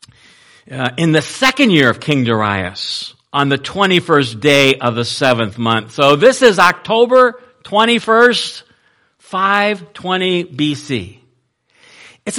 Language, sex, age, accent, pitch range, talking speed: English, male, 60-79, American, 125-190 Hz, 115 wpm